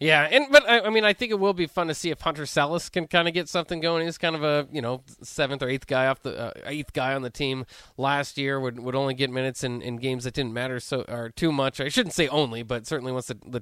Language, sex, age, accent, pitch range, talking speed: English, male, 20-39, American, 130-170 Hz, 295 wpm